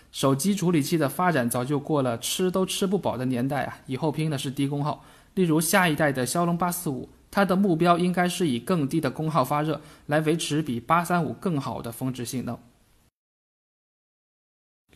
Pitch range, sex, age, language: 130-170 Hz, male, 20-39, Chinese